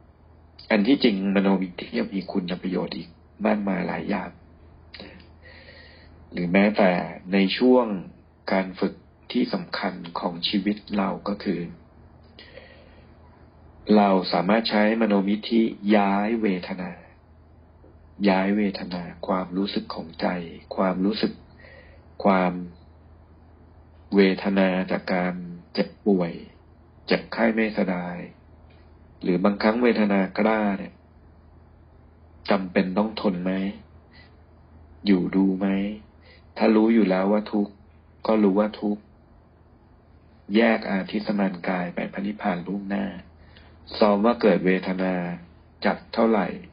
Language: Thai